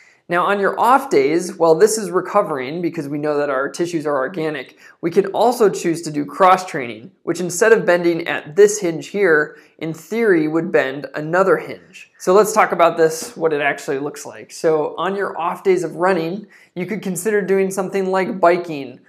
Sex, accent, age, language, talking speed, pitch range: male, American, 20-39, English, 200 wpm, 150-190 Hz